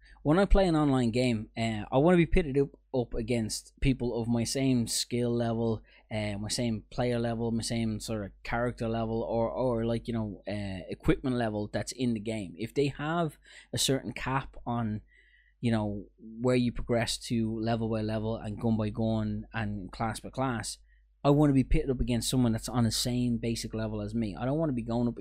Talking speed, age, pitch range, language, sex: 215 wpm, 20-39, 105-125 Hz, English, male